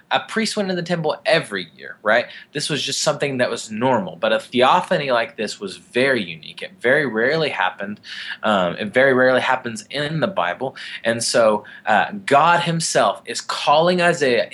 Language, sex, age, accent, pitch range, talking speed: English, male, 20-39, American, 105-140 Hz, 180 wpm